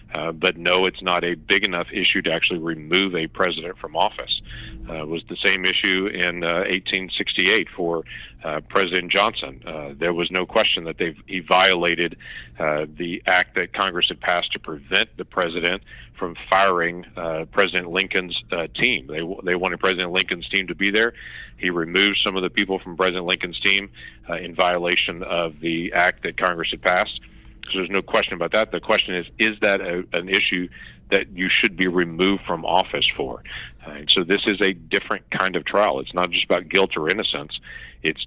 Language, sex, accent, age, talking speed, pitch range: English, male, American, 50-69, 195 wpm, 85-95 Hz